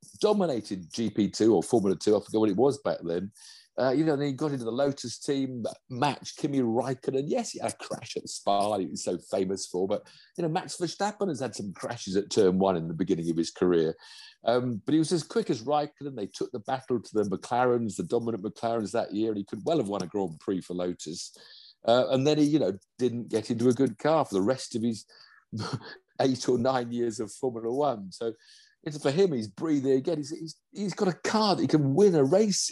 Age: 50-69